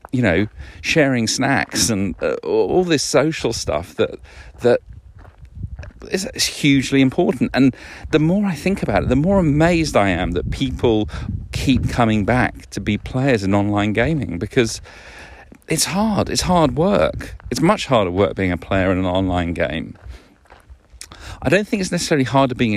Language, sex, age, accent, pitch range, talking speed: English, male, 40-59, British, 90-135 Hz, 165 wpm